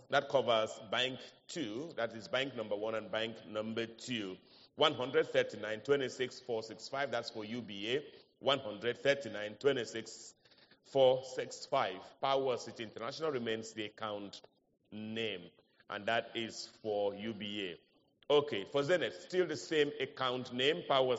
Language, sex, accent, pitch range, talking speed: English, male, Nigerian, 110-145 Hz, 145 wpm